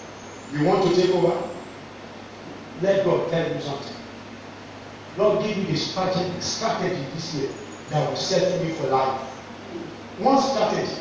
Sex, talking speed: male, 145 wpm